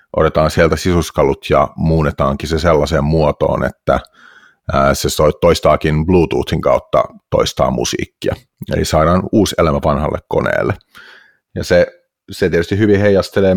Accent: native